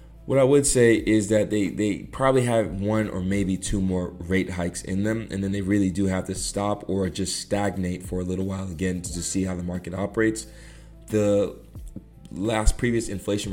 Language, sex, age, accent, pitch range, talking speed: English, male, 20-39, American, 90-105 Hz, 205 wpm